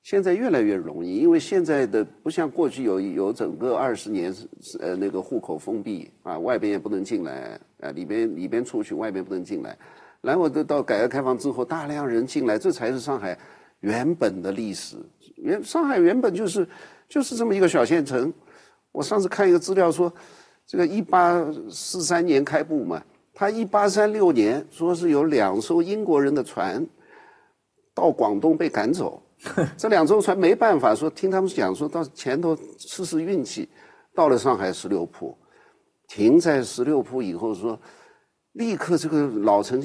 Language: Chinese